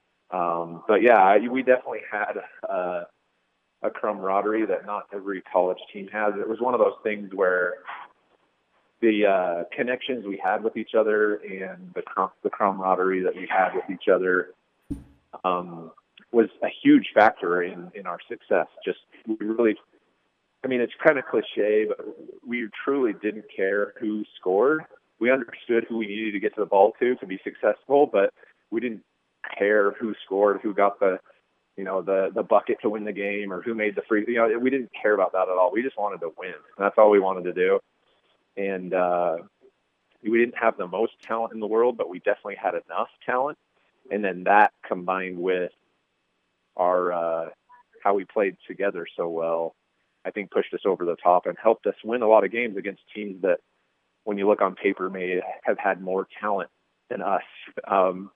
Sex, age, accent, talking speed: male, 30-49, American, 190 wpm